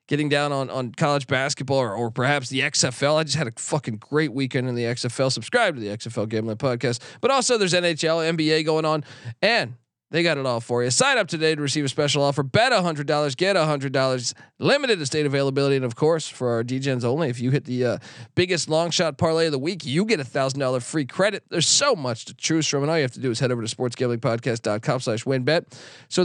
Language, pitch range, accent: English, 125-155 Hz, American